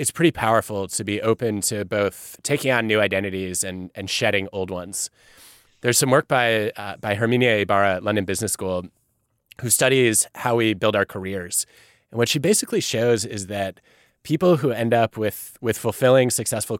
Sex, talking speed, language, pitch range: male, 180 wpm, English, 110-140 Hz